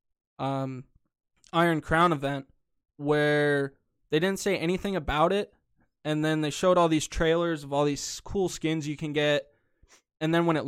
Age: 20-39